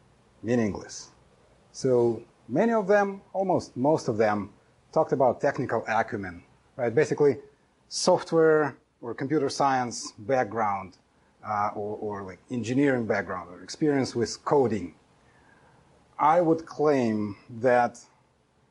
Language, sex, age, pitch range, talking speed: English, male, 30-49, 110-140 Hz, 110 wpm